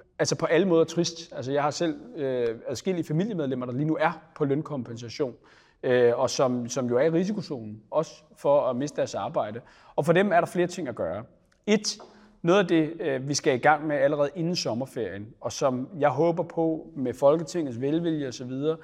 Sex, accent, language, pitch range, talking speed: male, native, Danish, 130-170 Hz, 205 wpm